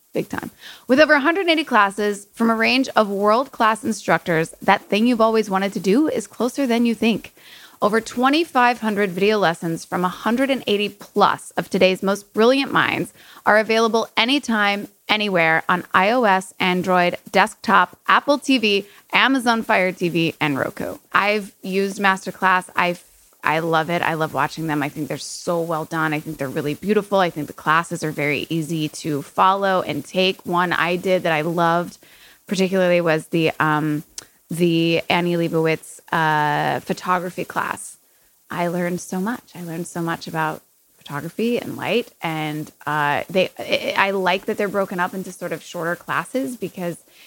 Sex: female